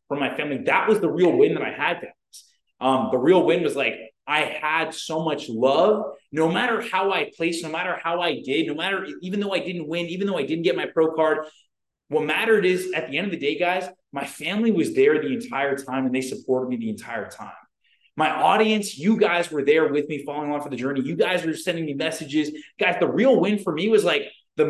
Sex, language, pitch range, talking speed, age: male, English, 145-205 Hz, 240 wpm, 20-39